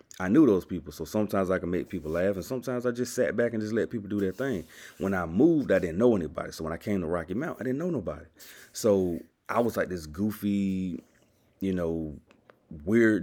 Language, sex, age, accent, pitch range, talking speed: English, male, 30-49, American, 80-100 Hz, 230 wpm